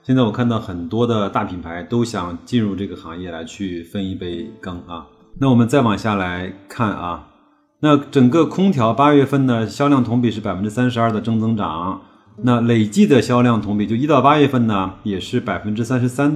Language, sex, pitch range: Chinese, male, 100-125 Hz